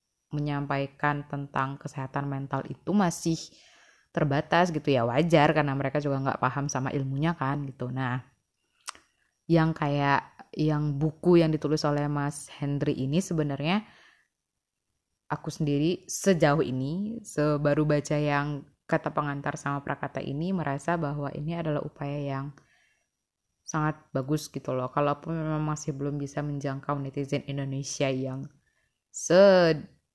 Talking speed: 125 wpm